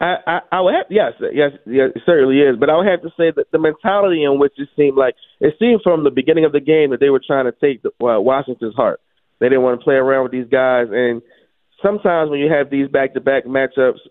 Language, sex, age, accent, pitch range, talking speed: English, male, 30-49, American, 130-155 Hz, 260 wpm